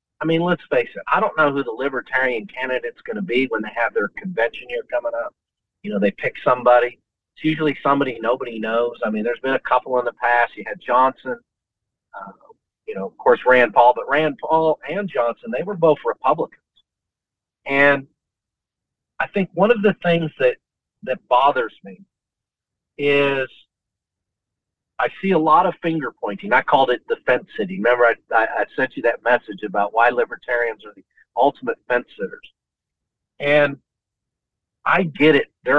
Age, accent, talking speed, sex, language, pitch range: 40-59, American, 175 wpm, male, English, 120-180 Hz